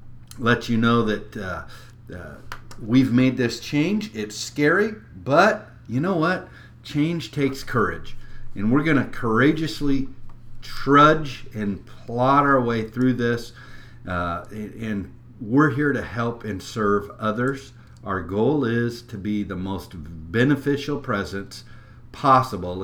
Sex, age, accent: male, 50-69, American